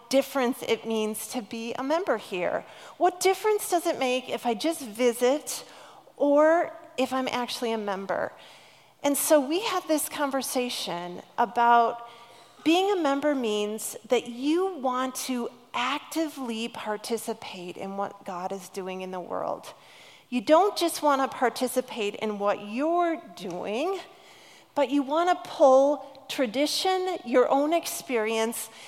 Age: 40-59